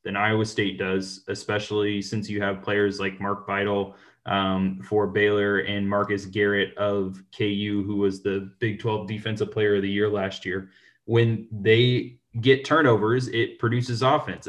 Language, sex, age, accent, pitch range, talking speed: English, male, 20-39, American, 100-120 Hz, 160 wpm